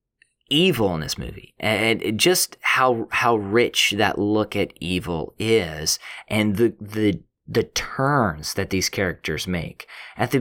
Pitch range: 100-130 Hz